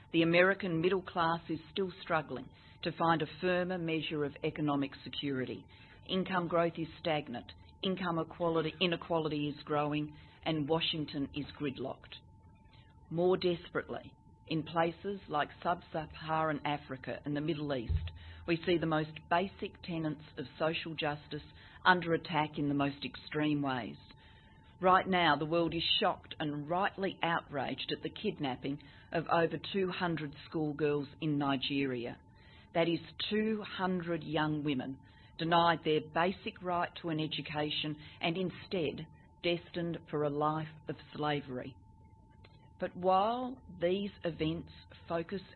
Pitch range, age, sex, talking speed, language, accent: 140-170 Hz, 40-59, female, 130 wpm, English, Australian